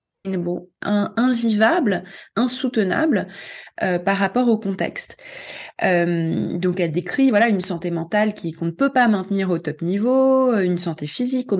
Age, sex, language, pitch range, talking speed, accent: 20-39, female, French, 175-230 Hz, 145 wpm, French